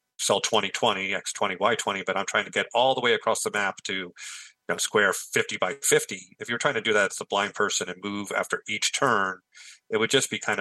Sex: male